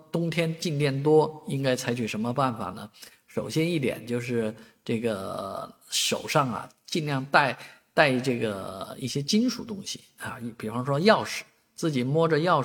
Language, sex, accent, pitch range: Chinese, male, native, 115-155 Hz